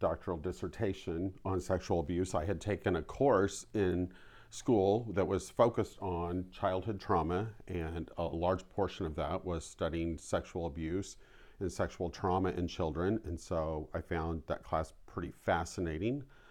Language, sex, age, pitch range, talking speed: English, male, 40-59, 85-100 Hz, 150 wpm